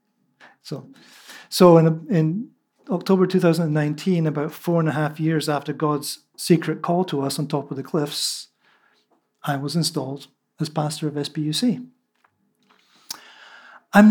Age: 50-69